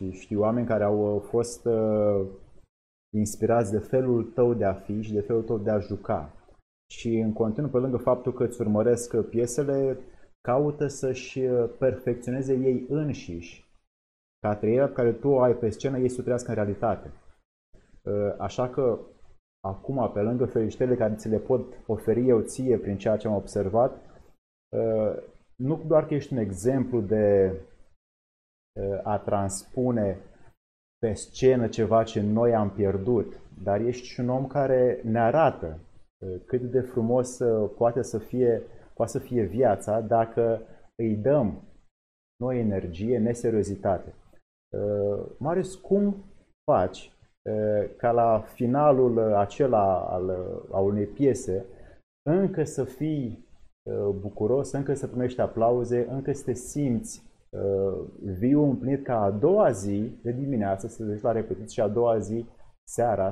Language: Romanian